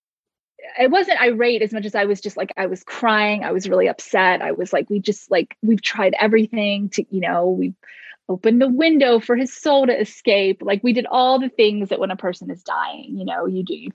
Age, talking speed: 20-39, 235 wpm